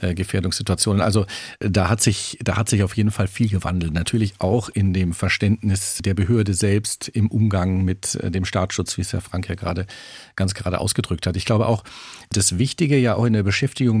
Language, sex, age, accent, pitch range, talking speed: German, male, 50-69, German, 95-110 Hz, 195 wpm